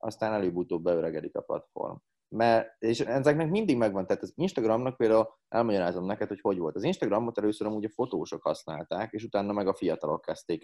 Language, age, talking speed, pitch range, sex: Hungarian, 30-49, 175 wpm, 100-140 Hz, male